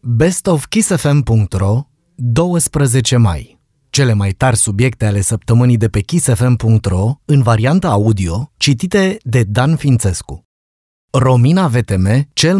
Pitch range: 105-135 Hz